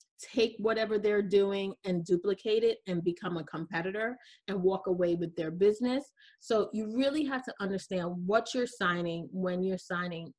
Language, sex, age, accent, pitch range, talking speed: English, female, 30-49, American, 180-240 Hz, 170 wpm